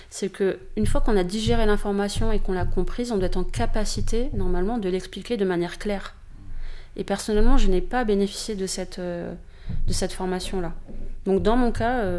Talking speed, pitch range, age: 180 wpm, 180-210 Hz, 30-49